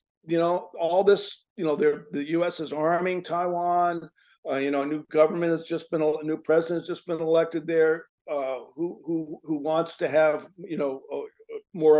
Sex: male